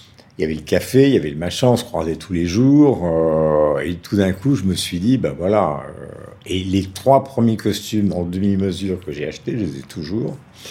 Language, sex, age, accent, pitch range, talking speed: French, male, 60-79, French, 85-105 Hz, 235 wpm